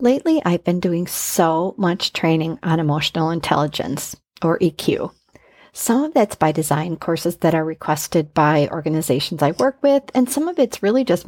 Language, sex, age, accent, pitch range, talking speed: English, female, 40-59, American, 165-210 Hz, 170 wpm